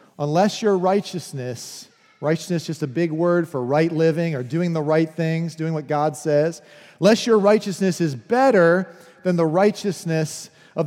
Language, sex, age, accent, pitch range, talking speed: English, male, 40-59, American, 170-225 Hz, 165 wpm